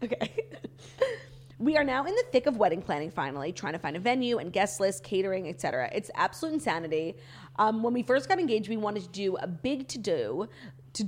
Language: English